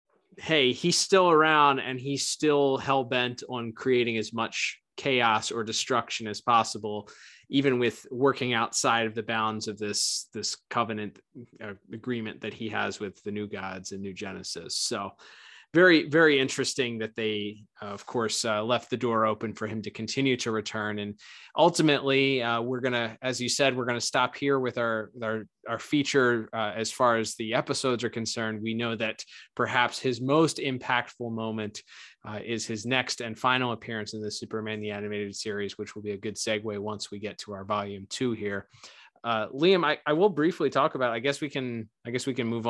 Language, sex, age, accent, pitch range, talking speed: English, male, 20-39, American, 110-135 Hz, 195 wpm